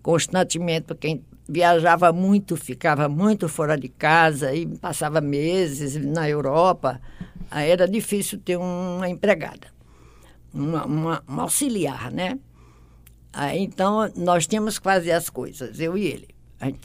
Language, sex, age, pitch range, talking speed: Portuguese, female, 60-79, 145-195 Hz, 120 wpm